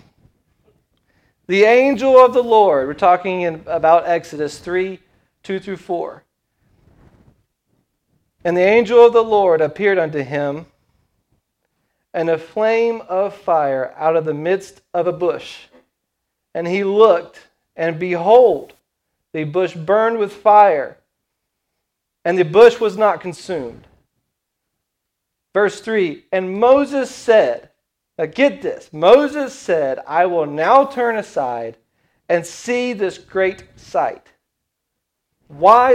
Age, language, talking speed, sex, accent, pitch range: 40-59, English, 120 wpm, male, American, 165-235 Hz